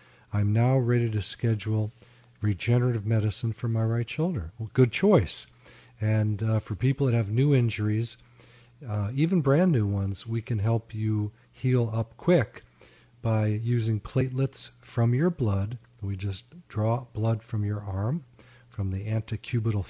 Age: 50-69